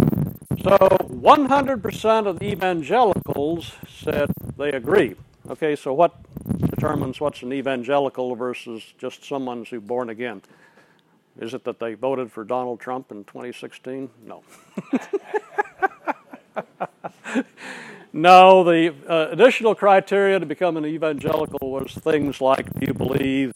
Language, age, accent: English, 60-79, American